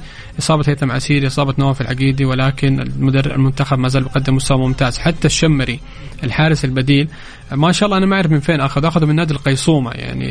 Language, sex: Arabic, male